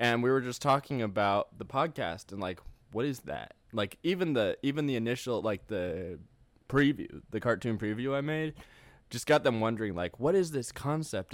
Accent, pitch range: American, 100-125 Hz